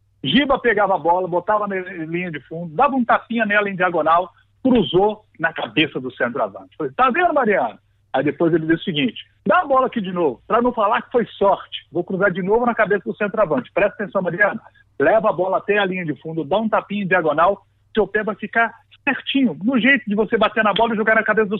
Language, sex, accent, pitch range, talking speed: Portuguese, male, Brazilian, 150-230 Hz, 230 wpm